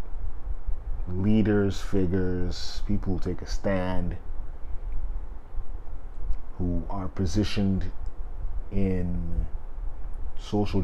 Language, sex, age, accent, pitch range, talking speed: English, male, 30-49, American, 75-100 Hz, 65 wpm